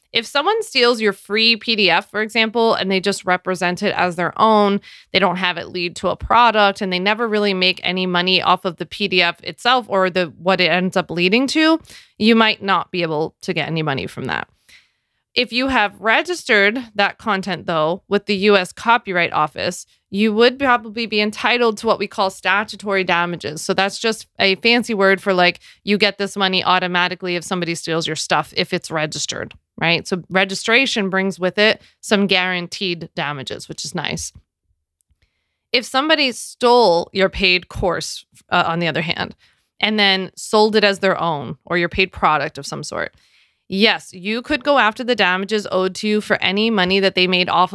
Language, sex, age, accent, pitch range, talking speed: English, female, 20-39, American, 175-215 Hz, 190 wpm